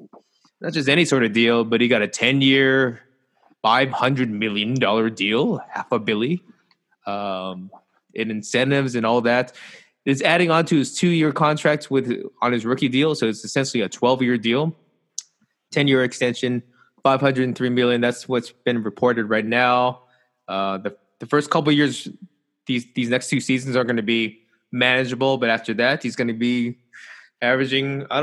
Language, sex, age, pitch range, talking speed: English, male, 20-39, 115-140 Hz, 165 wpm